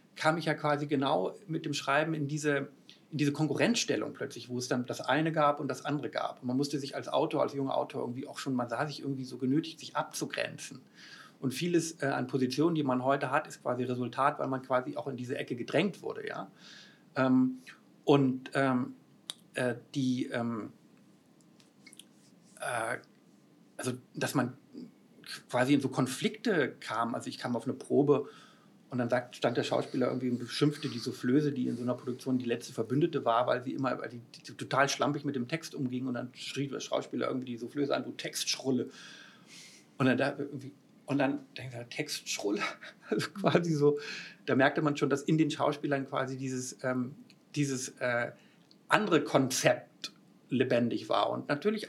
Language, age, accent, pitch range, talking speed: German, 50-69, German, 130-150 Hz, 185 wpm